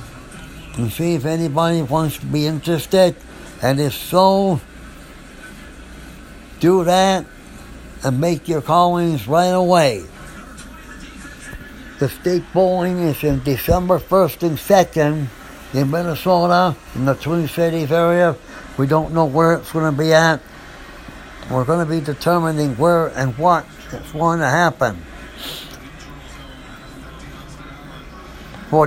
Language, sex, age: English, male, 60-79